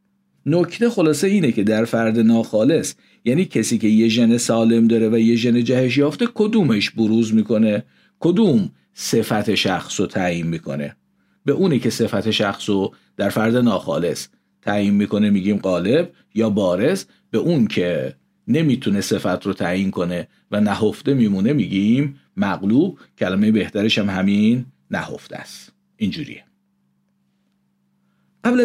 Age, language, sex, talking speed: 50-69, Persian, male, 130 wpm